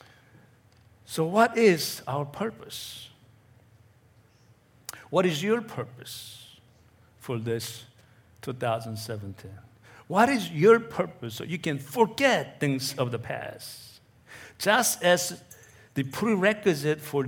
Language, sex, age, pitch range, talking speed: English, male, 60-79, 115-150 Hz, 100 wpm